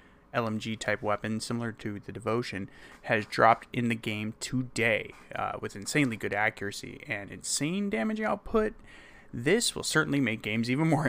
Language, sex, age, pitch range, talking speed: English, male, 20-39, 115-150 Hz, 150 wpm